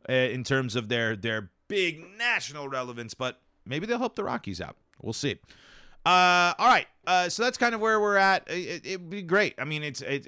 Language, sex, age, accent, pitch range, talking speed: English, male, 30-49, American, 115-160 Hz, 215 wpm